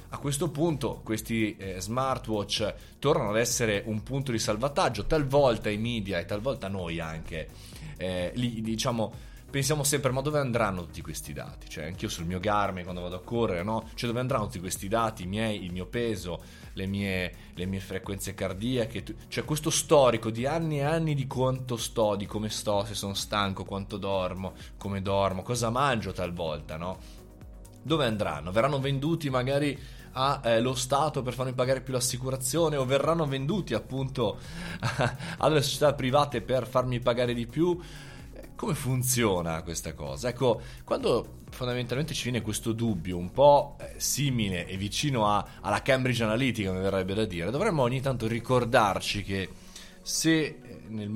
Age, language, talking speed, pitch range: 20-39, Italian, 165 wpm, 95-130 Hz